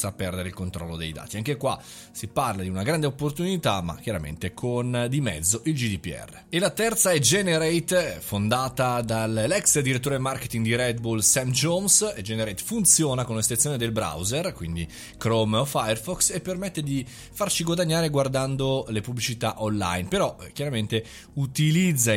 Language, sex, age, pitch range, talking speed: Italian, male, 20-39, 110-150 Hz, 155 wpm